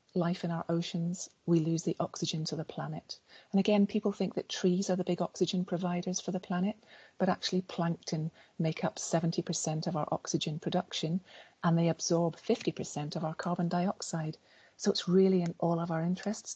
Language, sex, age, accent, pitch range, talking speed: English, female, 40-59, British, 160-195 Hz, 185 wpm